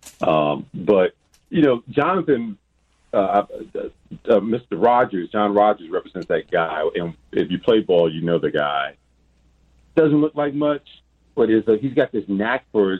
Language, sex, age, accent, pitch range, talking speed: English, male, 40-59, American, 85-115 Hz, 155 wpm